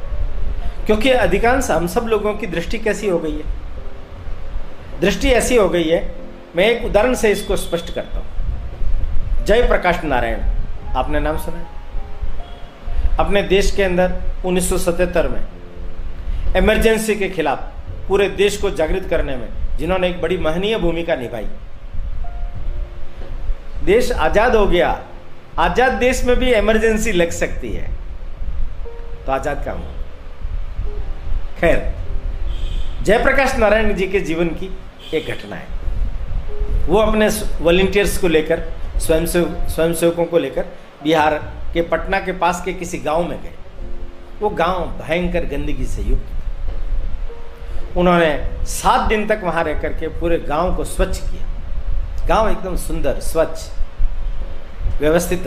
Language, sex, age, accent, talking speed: Hindi, male, 50-69, native, 125 wpm